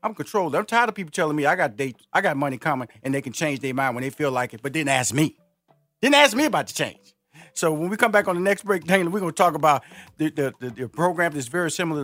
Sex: male